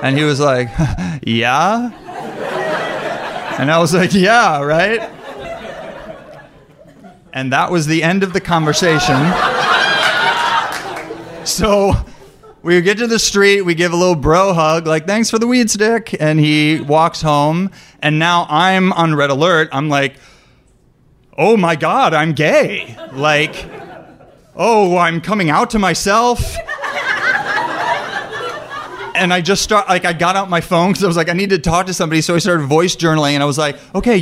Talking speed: 160 wpm